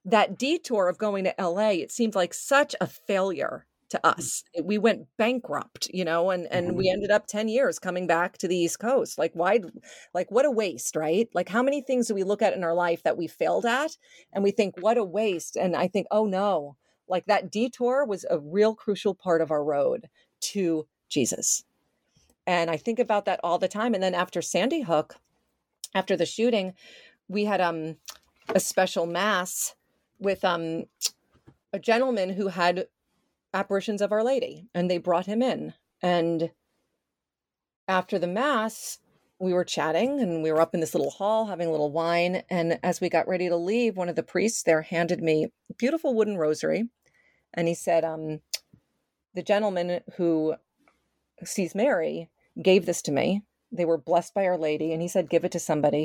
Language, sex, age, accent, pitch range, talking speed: English, female, 40-59, American, 170-215 Hz, 190 wpm